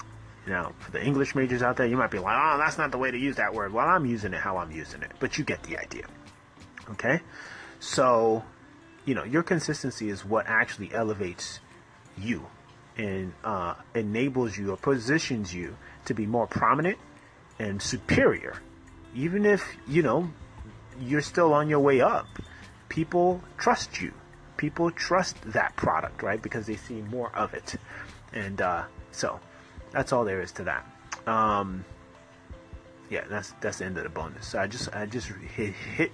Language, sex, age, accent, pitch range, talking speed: English, male, 30-49, American, 95-130 Hz, 175 wpm